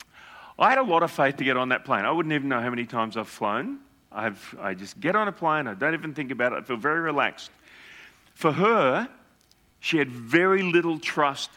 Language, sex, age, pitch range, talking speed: English, male, 40-59, 125-175 Hz, 225 wpm